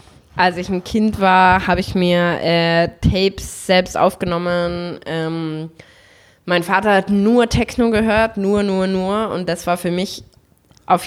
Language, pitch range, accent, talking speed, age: German, 160-185 Hz, German, 150 wpm, 20-39